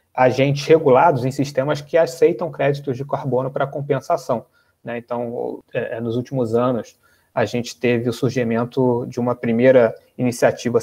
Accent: Brazilian